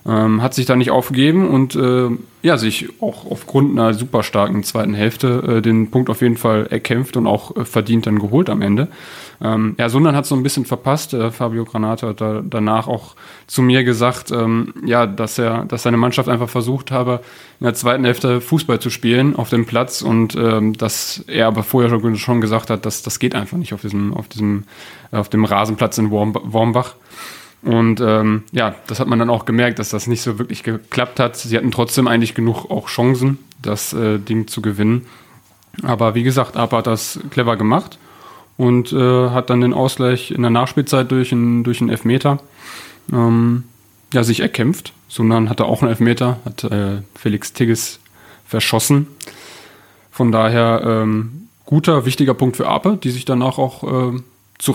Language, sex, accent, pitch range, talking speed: German, male, German, 110-125 Hz, 190 wpm